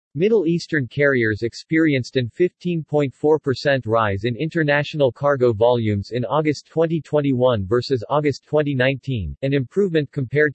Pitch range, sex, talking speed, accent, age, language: 120-150 Hz, male, 115 wpm, American, 40-59, English